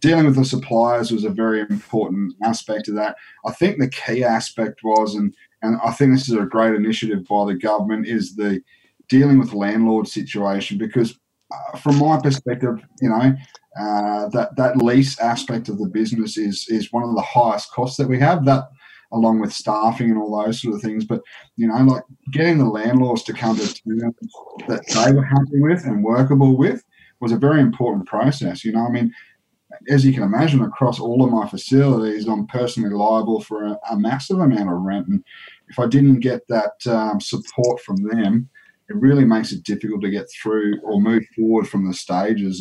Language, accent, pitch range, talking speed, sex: English, Australian, 105-130 Hz, 200 wpm, male